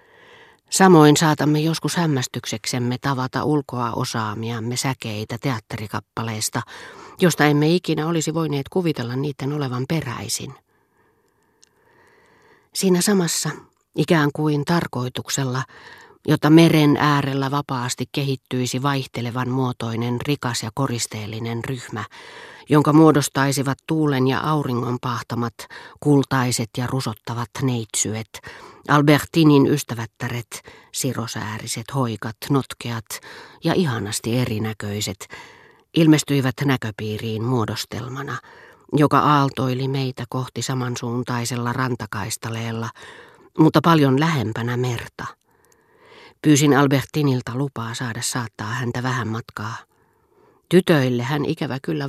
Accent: native